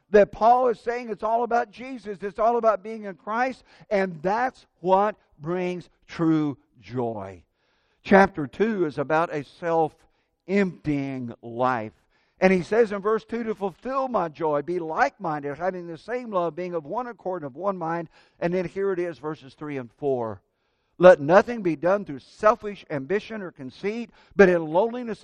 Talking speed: 170 wpm